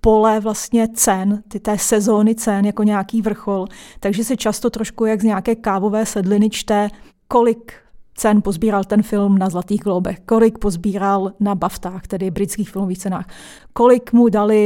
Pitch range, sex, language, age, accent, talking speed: 205-235 Hz, female, Czech, 30-49, native, 160 wpm